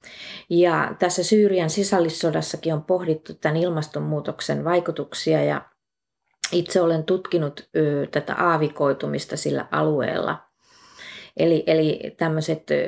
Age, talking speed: 30-49, 95 wpm